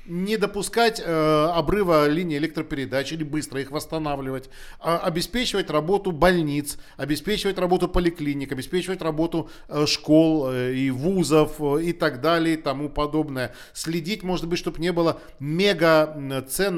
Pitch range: 140-175 Hz